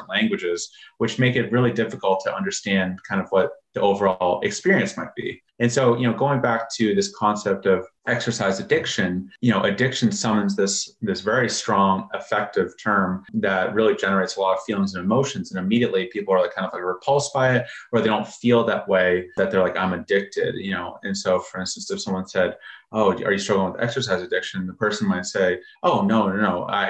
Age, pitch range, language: 30-49, 95-130 Hz, English